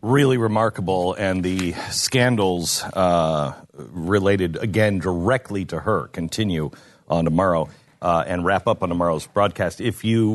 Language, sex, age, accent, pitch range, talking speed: English, male, 40-59, American, 95-140 Hz, 135 wpm